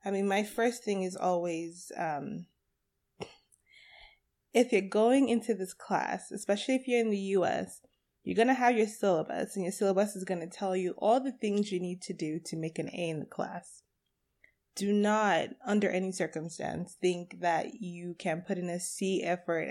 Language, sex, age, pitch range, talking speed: English, female, 20-39, 170-205 Hz, 190 wpm